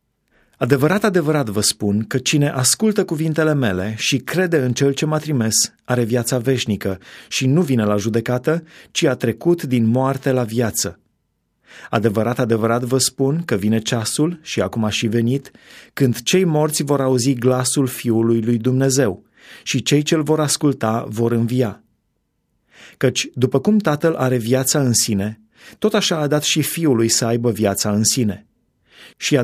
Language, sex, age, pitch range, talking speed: Romanian, male, 30-49, 115-145 Hz, 165 wpm